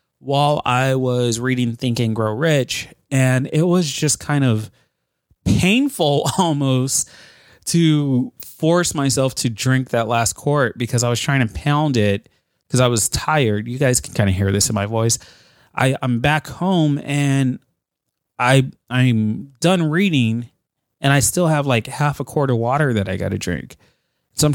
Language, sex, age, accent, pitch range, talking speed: English, male, 30-49, American, 115-150 Hz, 170 wpm